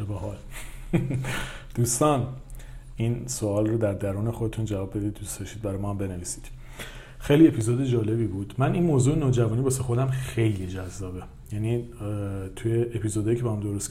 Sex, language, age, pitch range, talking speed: male, Persian, 40-59, 100-125 Hz, 145 wpm